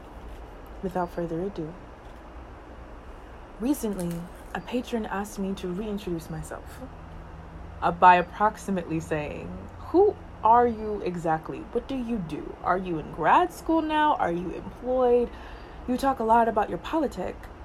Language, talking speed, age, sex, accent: English, 135 wpm, 20-39, female, American